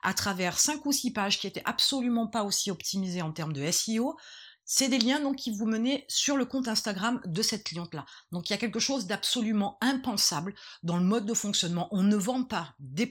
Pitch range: 185-245 Hz